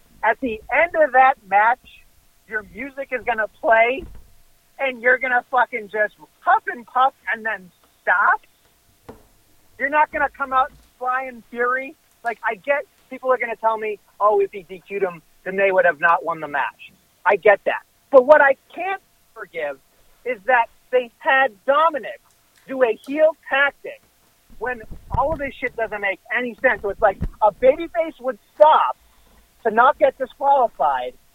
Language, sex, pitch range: English, male, 200-270 Hz